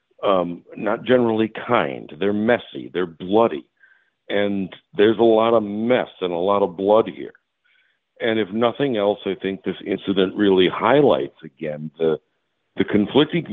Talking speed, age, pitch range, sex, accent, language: 150 wpm, 50-69, 95-125 Hz, male, American, English